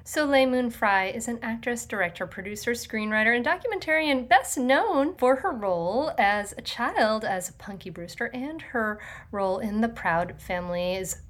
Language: English